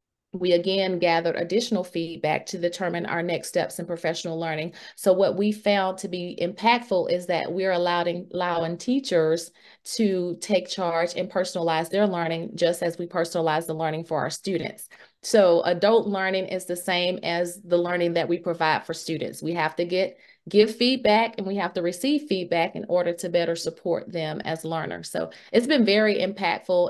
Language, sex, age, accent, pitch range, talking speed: English, female, 30-49, American, 170-200 Hz, 180 wpm